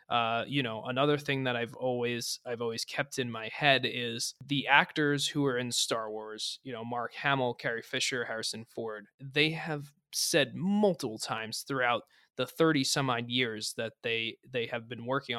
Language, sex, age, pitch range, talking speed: English, male, 20-39, 120-150 Hz, 185 wpm